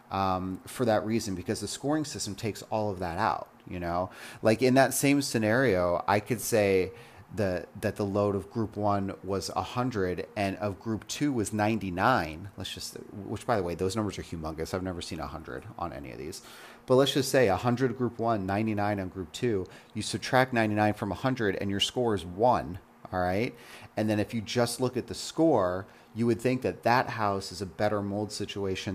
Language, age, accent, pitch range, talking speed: English, 30-49, American, 95-115 Hz, 215 wpm